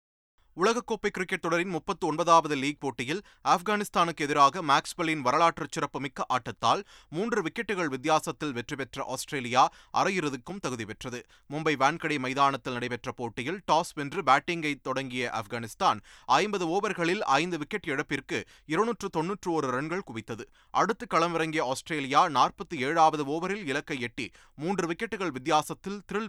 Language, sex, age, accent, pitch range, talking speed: Tamil, male, 30-49, native, 130-175 Hz, 115 wpm